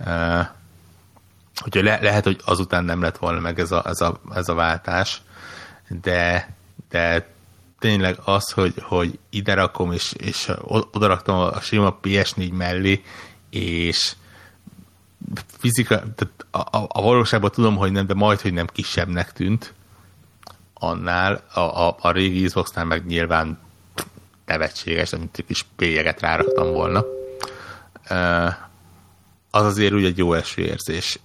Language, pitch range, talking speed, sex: Hungarian, 85-105 Hz, 135 wpm, male